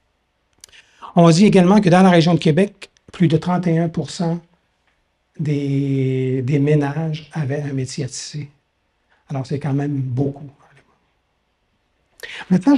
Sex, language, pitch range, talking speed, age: male, French, 135-165 Hz, 120 wpm, 60-79